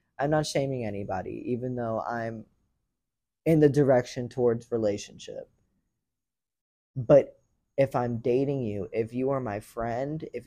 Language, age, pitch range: English, 10-29, 110-135 Hz